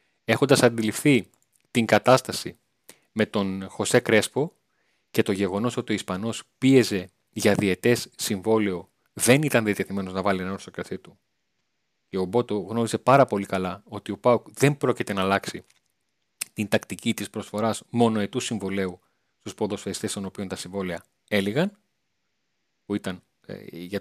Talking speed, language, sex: 145 wpm, Greek, male